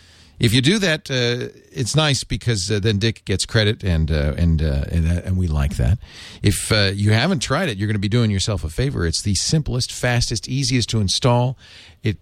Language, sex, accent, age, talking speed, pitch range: English, male, American, 50-69, 220 wpm, 90-125 Hz